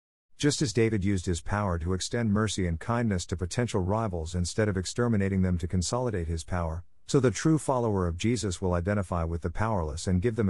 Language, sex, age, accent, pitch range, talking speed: English, male, 50-69, American, 90-120 Hz, 205 wpm